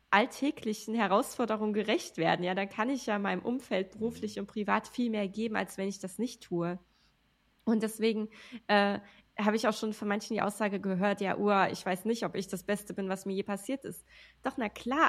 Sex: female